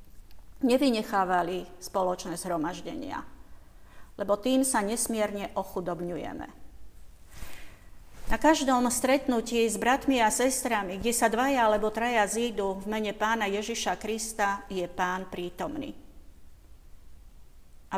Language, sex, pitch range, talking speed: Slovak, female, 170-215 Hz, 100 wpm